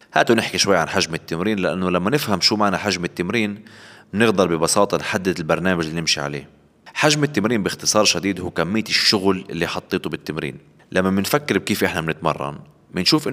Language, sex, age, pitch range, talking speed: Arabic, male, 20-39, 80-105 Hz, 160 wpm